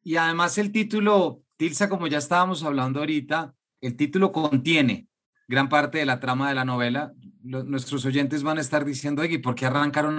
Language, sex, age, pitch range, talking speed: Spanish, male, 30-49, 130-155 Hz, 190 wpm